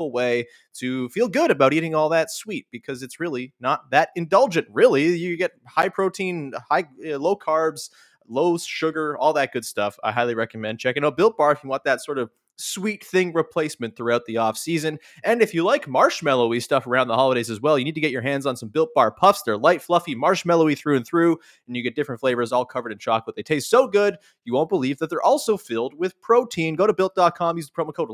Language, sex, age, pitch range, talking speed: English, male, 20-39, 125-170 Hz, 230 wpm